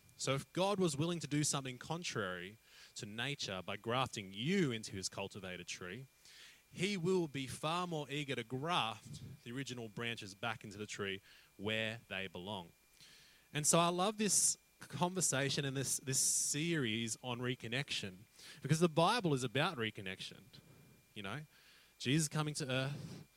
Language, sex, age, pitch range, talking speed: English, male, 20-39, 110-155 Hz, 155 wpm